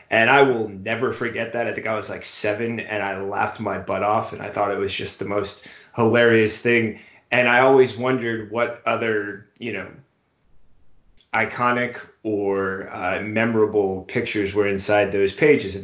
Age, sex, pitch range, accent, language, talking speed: 30-49, male, 100-115 Hz, American, English, 175 wpm